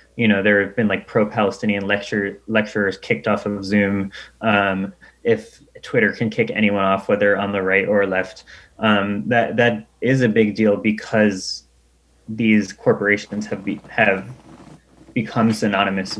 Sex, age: male, 20-39